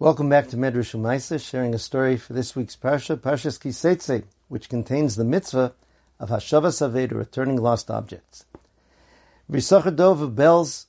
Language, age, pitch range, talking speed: English, 50-69, 120-160 Hz, 150 wpm